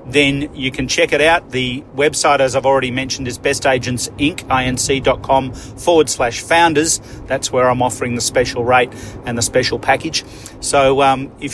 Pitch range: 125-155 Hz